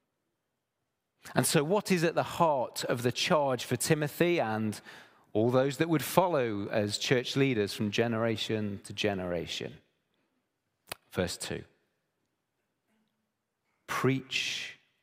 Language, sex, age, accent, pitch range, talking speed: English, male, 40-59, British, 110-150 Hz, 110 wpm